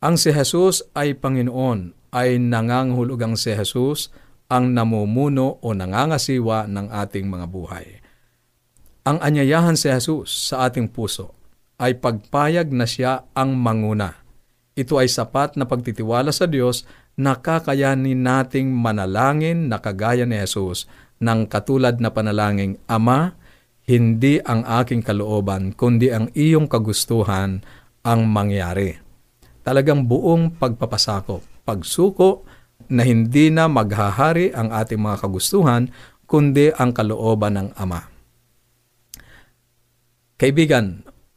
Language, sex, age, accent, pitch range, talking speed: Filipino, male, 50-69, native, 110-135 Hz, 115 wpm